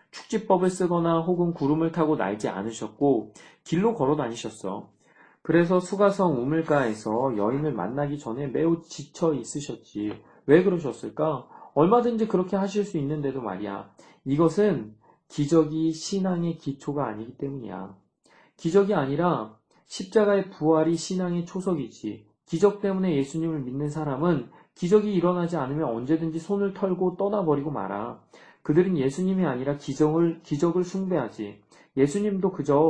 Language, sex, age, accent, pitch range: Korean, male, 40-59, native, 135-180 Hz